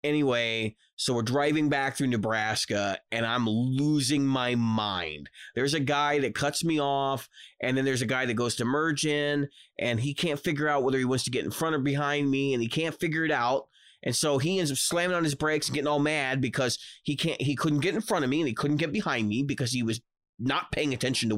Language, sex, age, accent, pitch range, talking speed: English, male, 30-49, American, 120-150 Hz, 240 wpm